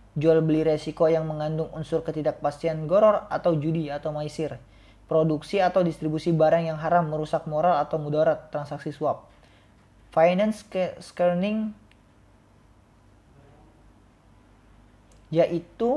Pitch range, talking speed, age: 140-165 Hz, 105 wpm, 20-39